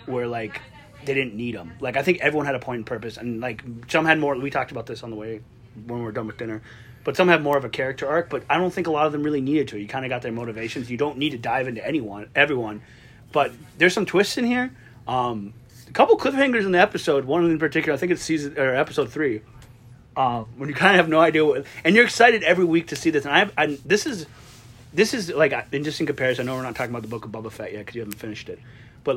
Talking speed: 280 wpm